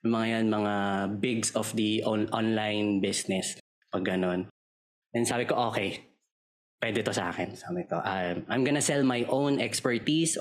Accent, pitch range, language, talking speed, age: native, 100-135 Hz, Filipino, 160 wpm, 20-39